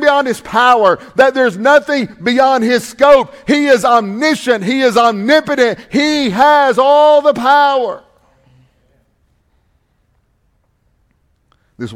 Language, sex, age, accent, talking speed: English, male, 40-59, American, 105 wpm